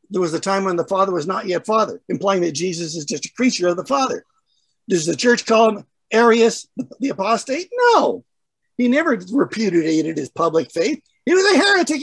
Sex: male